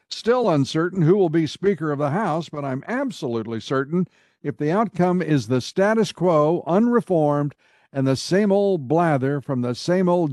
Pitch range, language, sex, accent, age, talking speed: 130-175 Hz, English, male, American, 60-79, 175 wpm